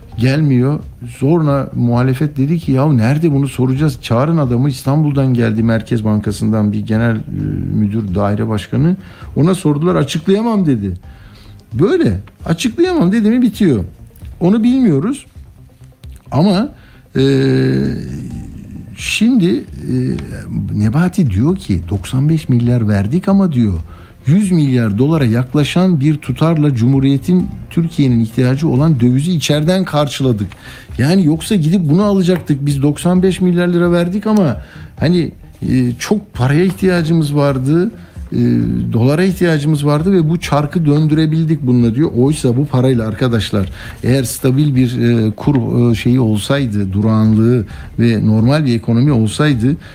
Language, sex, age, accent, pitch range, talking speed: Turkish, male, 60-79, native, 115-160 Hz, 115 wpm